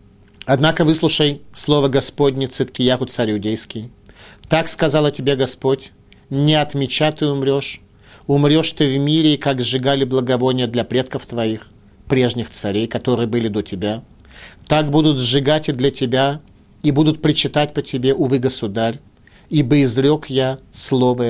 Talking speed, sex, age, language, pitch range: 135 wpm, male, 40-59, Russian, 105-140 Hz